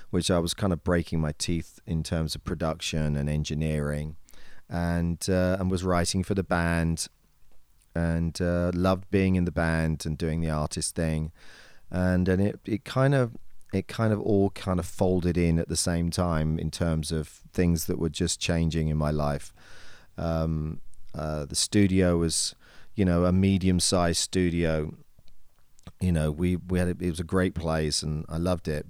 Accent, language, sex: British, English, male